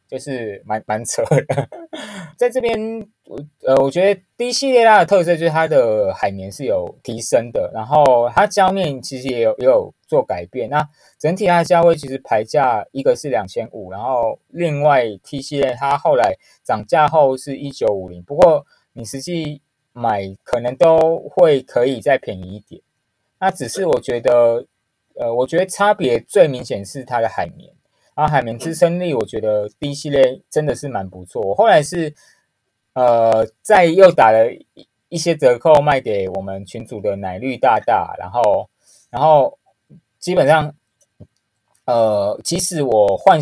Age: 20-39